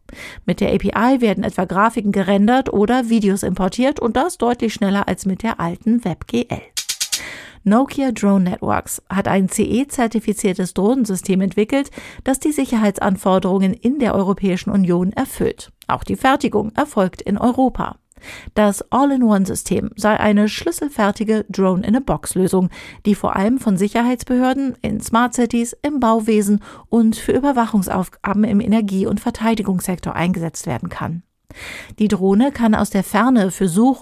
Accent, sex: German, female